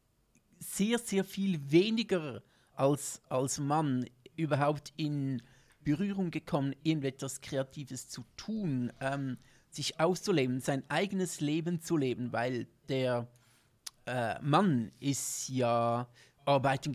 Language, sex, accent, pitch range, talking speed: German, male, German, 130-165 Hz, 105 wpm